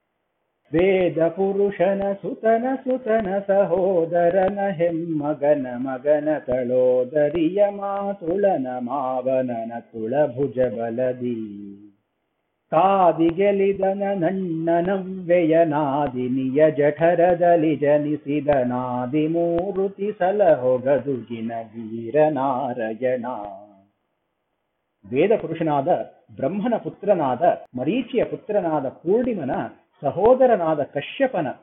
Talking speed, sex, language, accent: 55 wpm, male, English, Indian